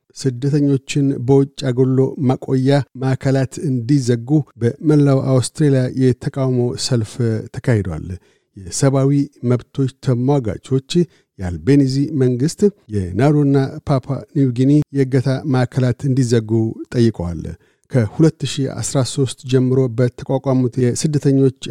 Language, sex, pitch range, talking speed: Amharic, male, 120-140 Hz, 75 wpm